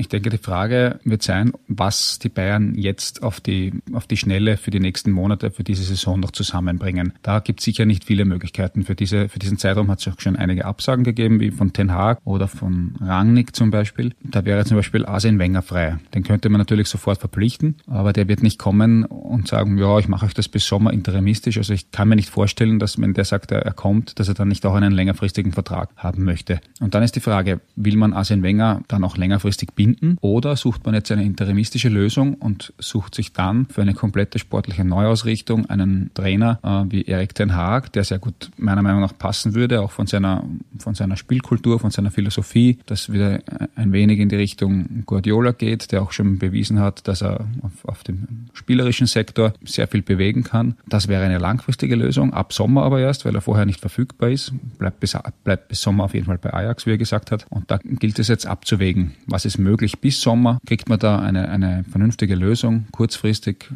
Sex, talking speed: male, 210 wpm